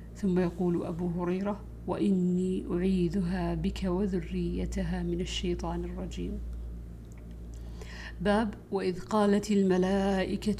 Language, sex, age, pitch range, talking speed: Arabic, female, 50-69, 175-190 Hz, 85 wpm